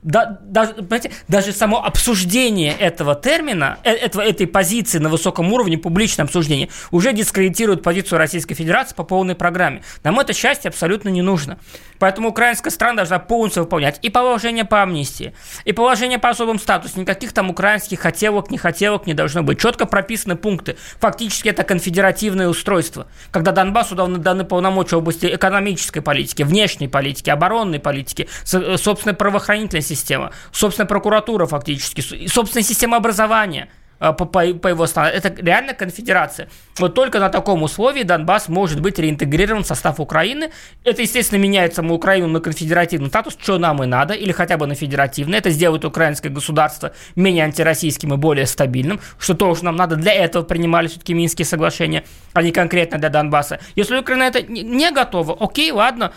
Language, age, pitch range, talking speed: Russian, 20-39, 165-210 Hz, 155 wpm